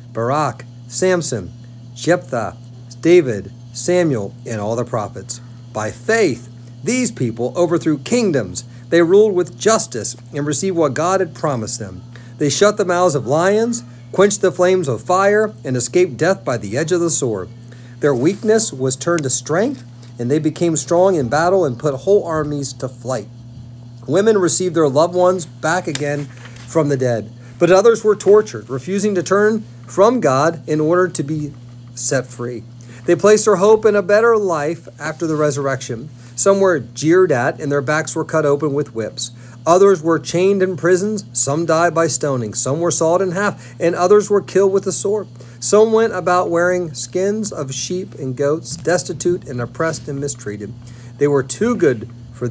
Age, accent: 40-59, American